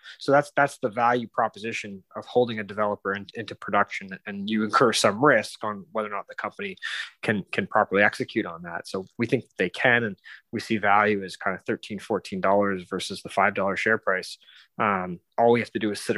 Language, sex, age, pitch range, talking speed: English, male, 20-39, 105-125 Hz, 210 wpm